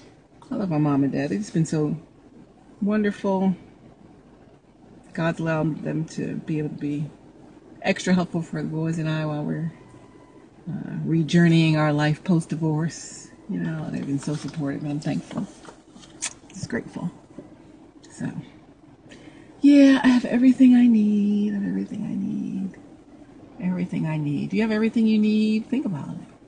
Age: 40-59